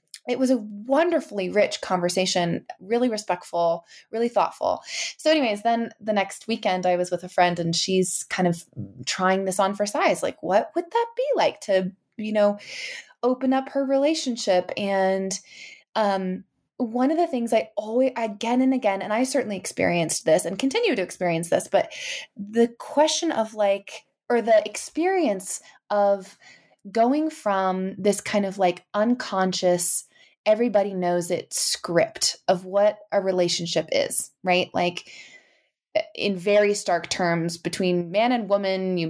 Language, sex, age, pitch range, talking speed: English, female, 20-39, 185-245 Hz, 155 wpm